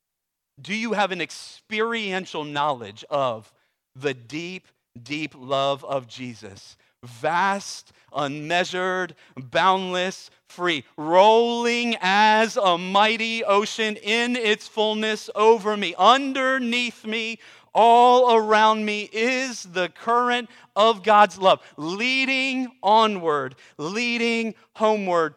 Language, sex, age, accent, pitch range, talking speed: English, male, 40-59, American, 155-225 Hz, 100 wpm